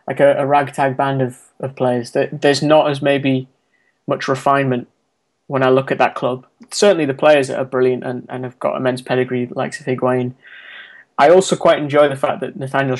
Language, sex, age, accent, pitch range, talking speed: English, male, 20-39, British, 125-140 Hz, 195 wpm